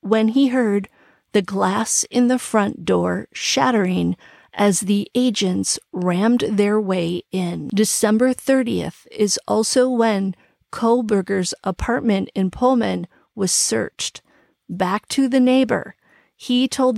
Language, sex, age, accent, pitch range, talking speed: English, female, 40-59, American, 195-240 Hz, 120 wpm